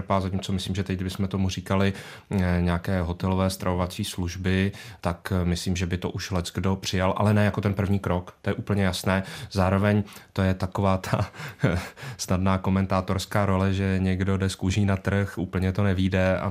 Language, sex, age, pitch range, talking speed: Czech, male, 30-49, 95-110 Hz, 180 wpm